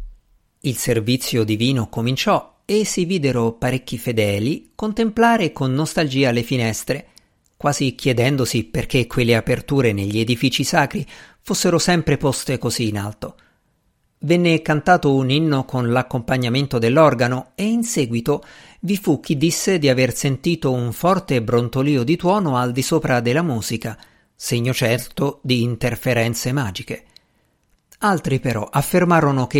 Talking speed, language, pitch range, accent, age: 130 wpm, Italian, 120-160 Hz, native, 50-69